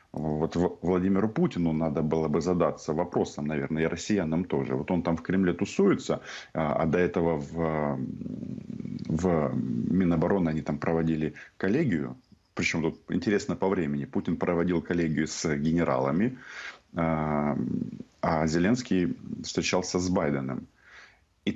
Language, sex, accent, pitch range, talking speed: Russian, male, native, 80-110 Hz, 120 wpm